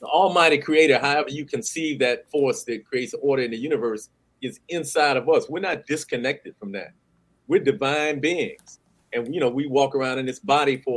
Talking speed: 195 wpm